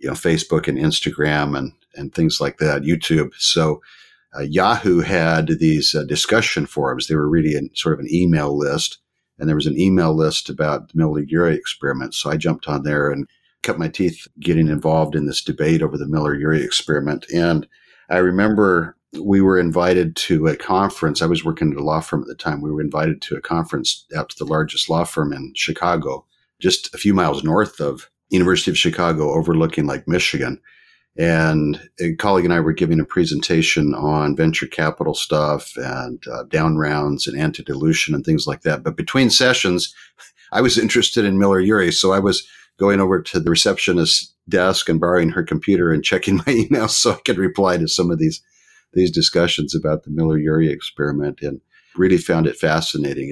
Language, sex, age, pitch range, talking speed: English, male, 50-69, 75-90 Hz, 185 wpm